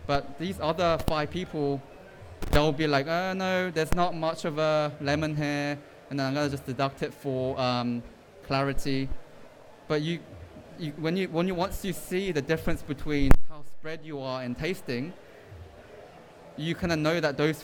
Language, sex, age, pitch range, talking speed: English, male, 20-39, 130-155 Hz, 175 wpm